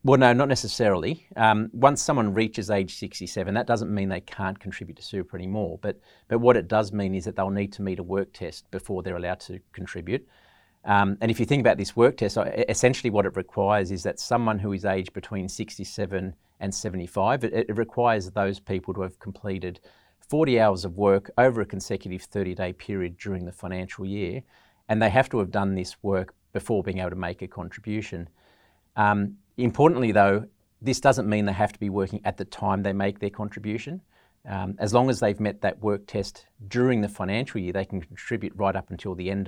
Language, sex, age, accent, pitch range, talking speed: English, male, 40-59, Australian, 95-110 Hz, 210 wpm